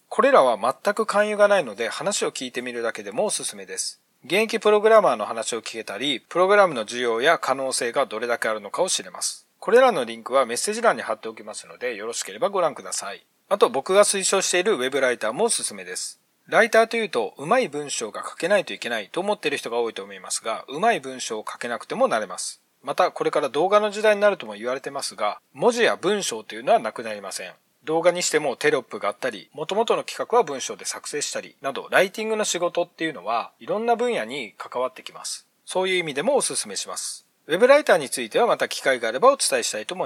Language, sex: Japanese, male